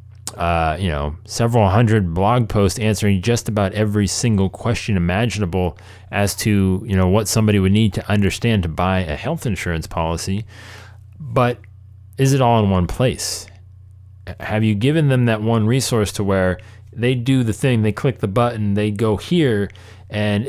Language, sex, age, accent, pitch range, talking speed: English, male, 30-49, American, 95-120 Hz, 170 wpm